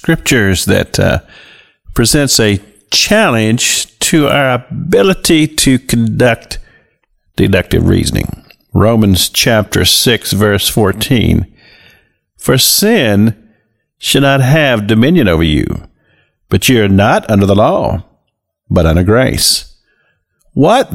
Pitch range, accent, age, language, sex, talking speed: 95-130 Hz, American, 50-69, English, male, 105 wpm